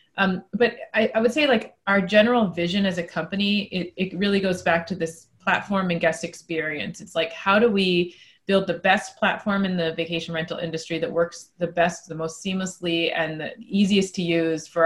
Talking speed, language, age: 205 wpm, English, 30-49